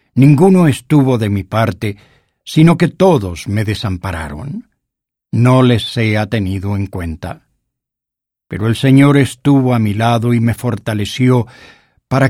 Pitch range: 105-135 Hz